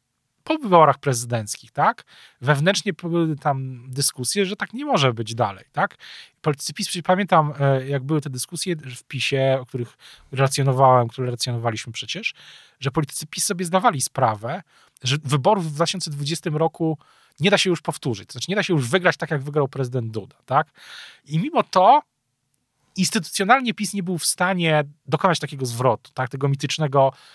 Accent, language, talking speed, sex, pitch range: native, Polish, 160 wpm, male, 130-165 Hz